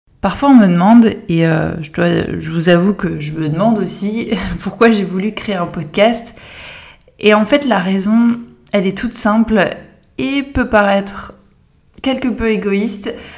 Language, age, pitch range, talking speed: French, 20-39, 185-220 Hz, 160 wpm